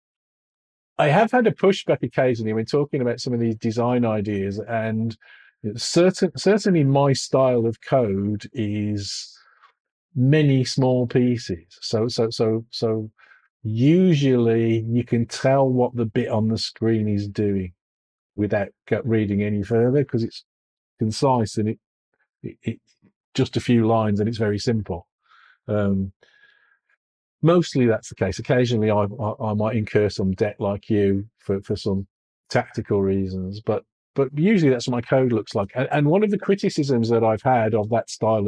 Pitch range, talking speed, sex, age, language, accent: 105-135 Hz, 155 wpm, male, 40-59, English, British